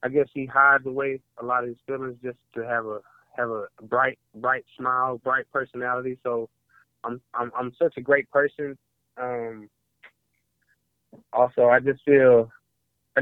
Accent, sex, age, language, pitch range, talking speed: American, male, 20-39, English, 115-135 Hz, 160 wpm